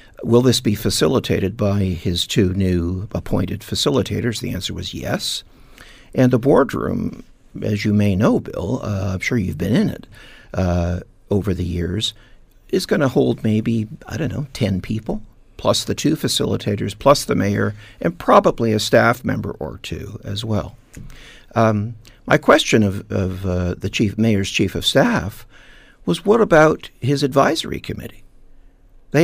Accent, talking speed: American, 160 wpm